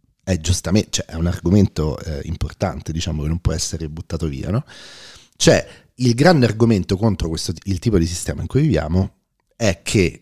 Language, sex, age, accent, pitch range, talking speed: Italian, male, 40-59, native, 85-115 Hz, 180 wpm